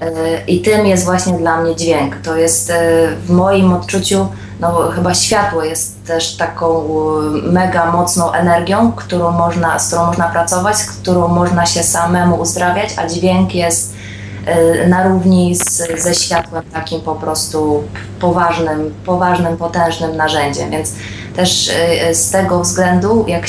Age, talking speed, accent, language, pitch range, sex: 20-39, 130 wpm, native, Polish, 165-185 Hz, female